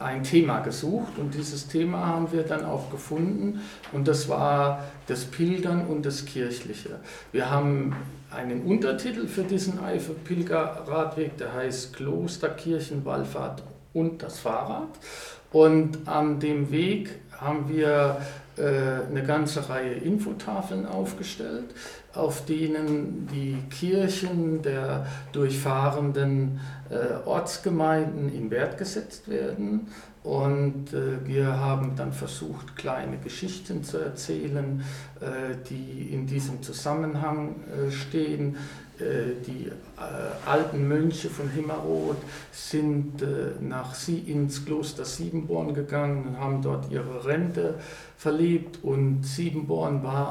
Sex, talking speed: male, 115 wpm